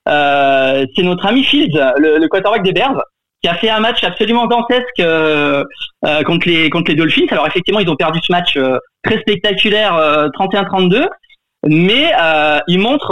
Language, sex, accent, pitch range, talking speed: French, male, French, 155-220 Hz, 185 wpm